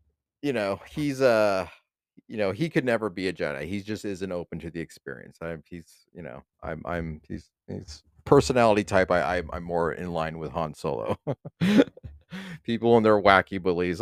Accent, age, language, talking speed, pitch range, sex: American, 30-49, English, 185 wpm, 80-115 Hz, male